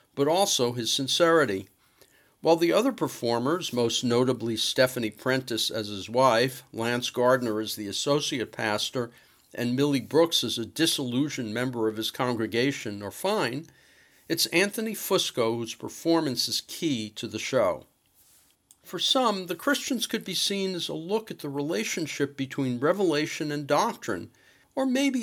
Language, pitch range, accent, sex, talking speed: English, 120-170 Hz, American, male, 145 wpm